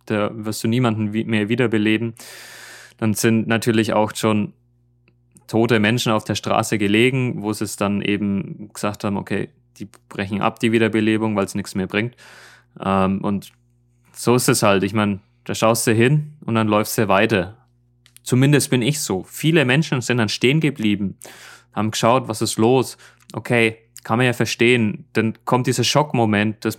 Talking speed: 170 wpm